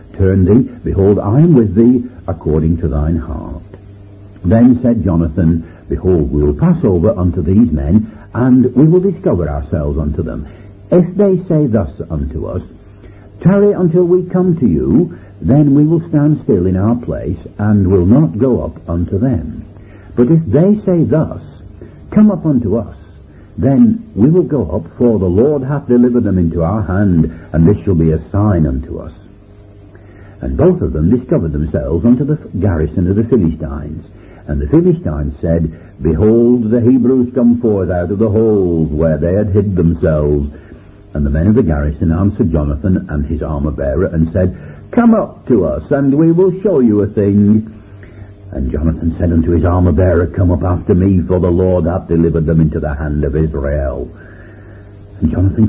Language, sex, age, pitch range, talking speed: English, male, 60-79, 80-115 Hz, 175 wpm